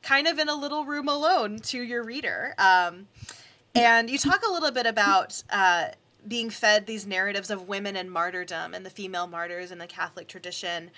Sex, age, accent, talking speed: female, 20-39, American, 190 wpm